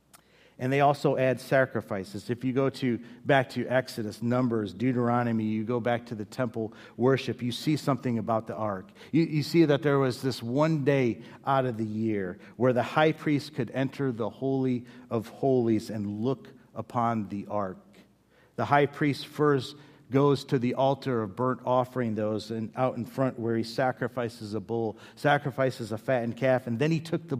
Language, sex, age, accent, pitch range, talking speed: English, male, 50-69, American, 115-140 Hz, 185 wpm